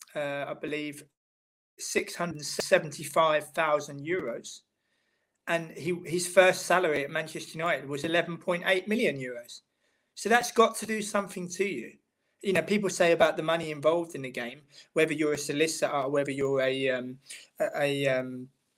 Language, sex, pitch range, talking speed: English, male, 145-175 Hz, 155 wpm